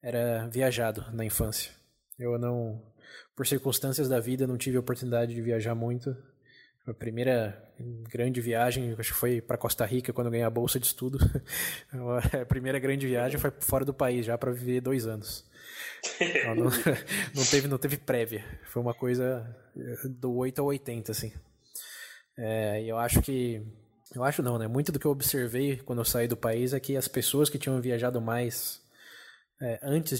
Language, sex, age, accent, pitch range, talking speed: Portuguese, male, 20-39, Brazilian, 115-135 Hz, 180 wpm